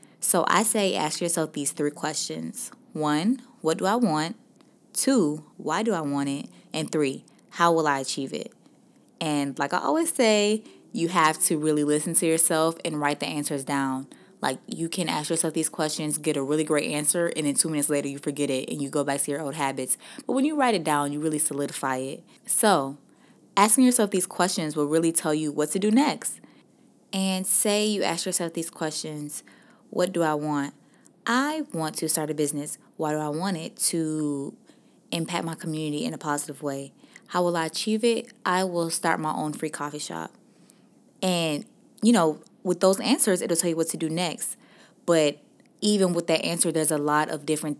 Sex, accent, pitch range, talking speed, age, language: female, American, 150-195 Hz, 200 wpm, 20-39, English